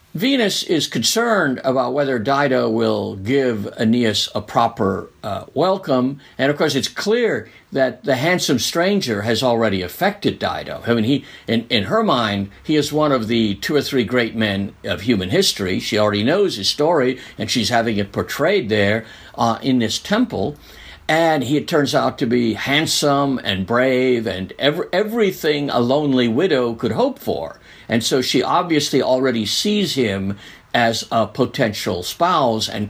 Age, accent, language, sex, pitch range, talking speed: 50-69, American, English, male, 110-150 Hz, 170 wpm